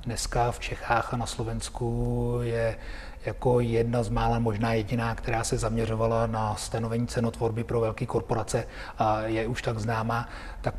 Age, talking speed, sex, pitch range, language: 30-49, 150 wpm, male, 115-130 Hz, Czech